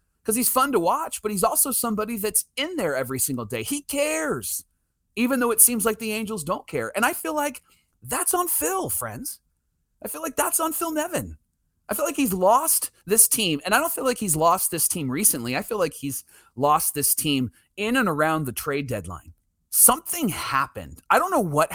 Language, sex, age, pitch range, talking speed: English, male, 30-49, 125-210 Hz, 210 wpm